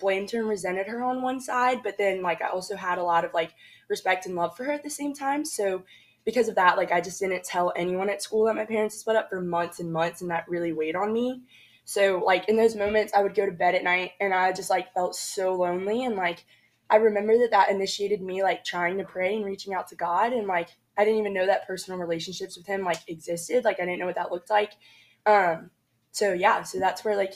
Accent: American